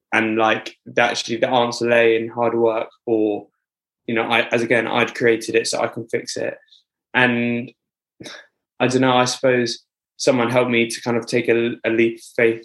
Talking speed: 200 wpm